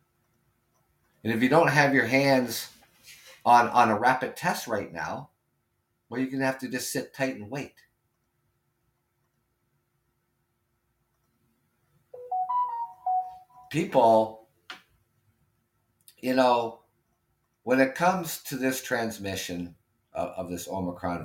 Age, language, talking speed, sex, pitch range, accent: 50-69, English, 105 wpm, male, 100-130 Hz, American